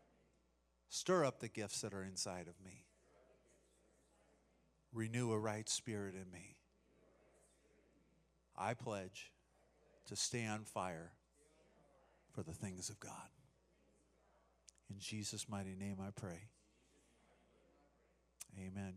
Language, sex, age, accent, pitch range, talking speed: English, male, 40-59, American, 105-135 Hz, 105 wpm